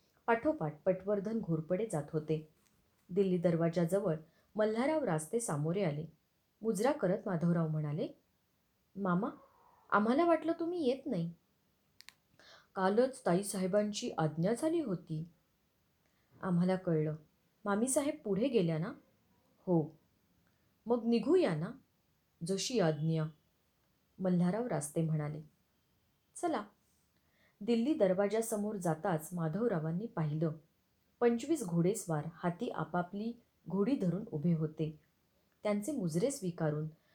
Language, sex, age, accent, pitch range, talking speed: Marathi, female, 20-39, native, 160-220 Hz, 95 wpm